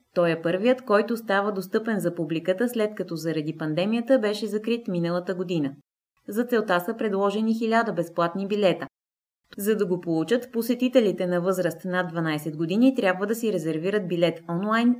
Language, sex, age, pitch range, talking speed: Bulgarian, female, 20-39, 170-225 Hz, 155 wpm